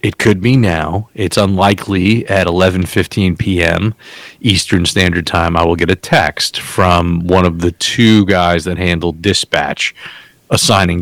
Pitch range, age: 85-100 Hz, 40-59